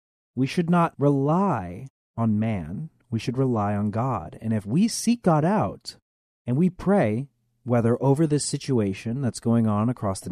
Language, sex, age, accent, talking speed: English, male, 40-59, American, 170 wpm